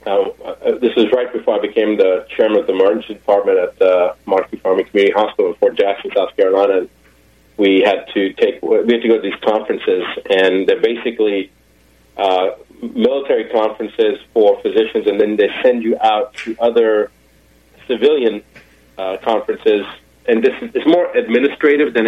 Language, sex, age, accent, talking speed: English, male, 30-49, American, 165 wpm